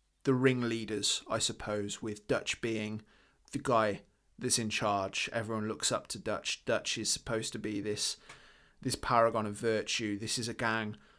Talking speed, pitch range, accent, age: 165 wpm, 105-115 Hz, British, 20-39